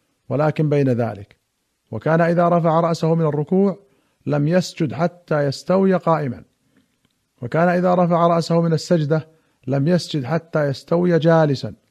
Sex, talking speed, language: male, 125 wpm, Arabic